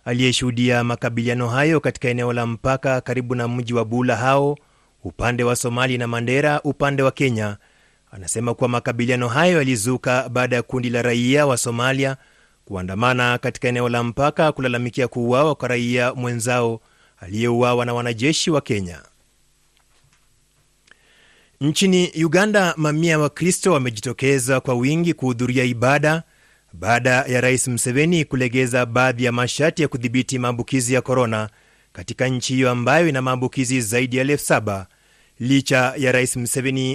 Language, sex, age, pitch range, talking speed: Swahili, male, 30-49, 120-140 Hz, 140 wpm